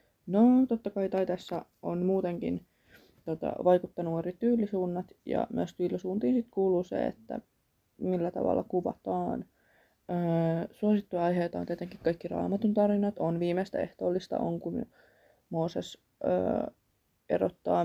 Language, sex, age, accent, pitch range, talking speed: Finnish, female, 20-39, native, 175-205 Hz, 120 wpm